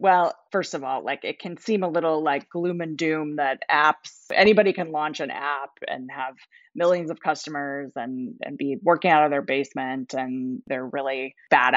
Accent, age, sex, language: American, 30-49, female, English